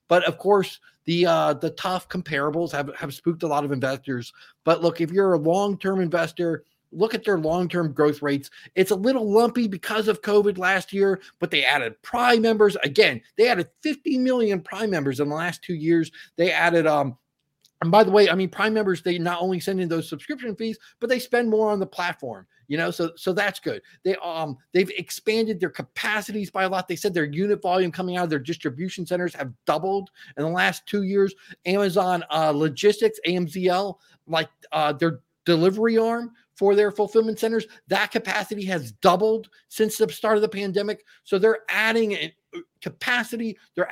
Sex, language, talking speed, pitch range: male, English, 190 wpm, 165-210 Hz